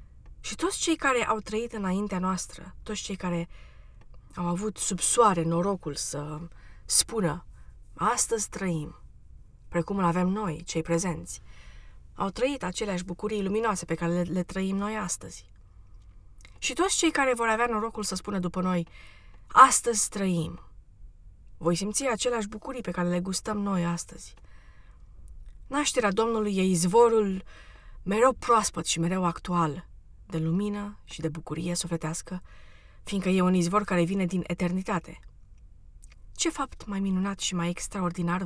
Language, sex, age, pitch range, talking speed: Romanian, female, 20-39, 150-200 Hz, 140 wpm